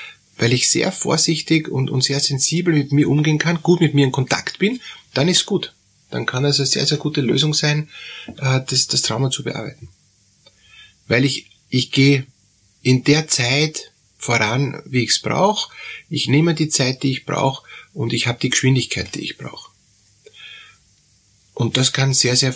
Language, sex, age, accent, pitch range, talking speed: German, male, 30-49, Austrian, 115-150 Hz, 180 wpm